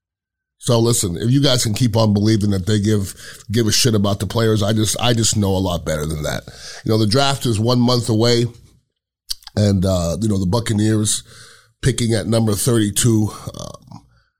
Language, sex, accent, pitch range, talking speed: English, male, American, 110-155 Hz, 195 wpm